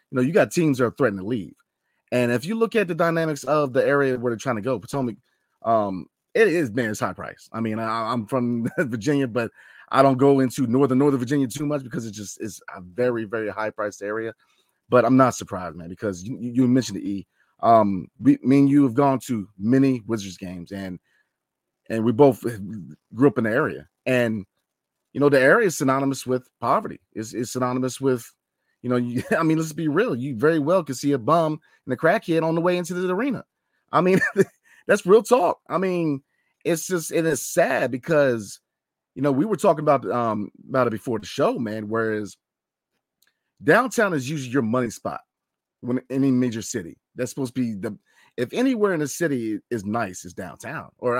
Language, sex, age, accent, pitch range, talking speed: English, male, 30-49, American, 115-145 Hz, 210 wpm